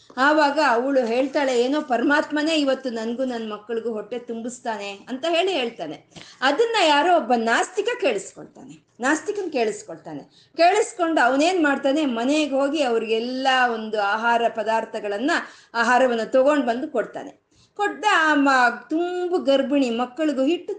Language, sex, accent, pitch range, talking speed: Kannada, female, native, 230-315 Hz, 115 wpm